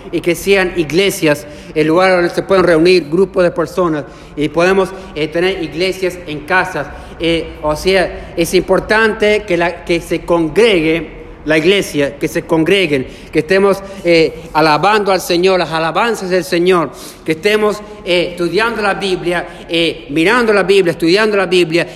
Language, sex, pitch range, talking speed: Spanish, male, 155-190 Hz, 155 wpm